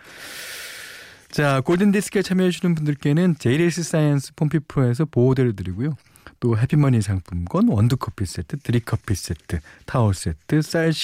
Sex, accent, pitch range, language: male, native, 105-155 Hz, Korean